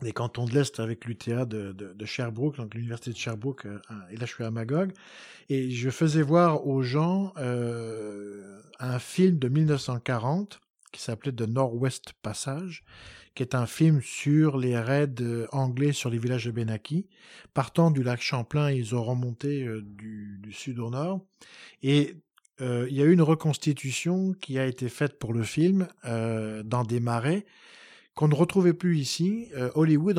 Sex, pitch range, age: male, 115-150 Hz, 50-69